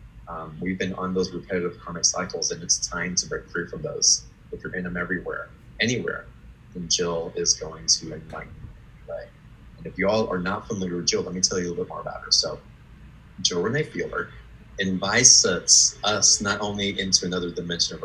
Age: 30-49